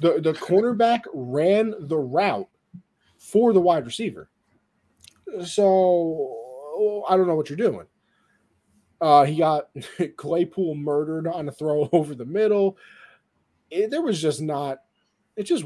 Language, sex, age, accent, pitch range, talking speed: English, male, 20-39, American, 125-160 Hz, 140 wpm